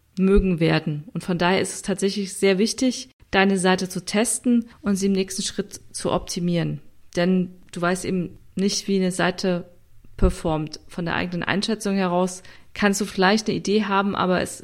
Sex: female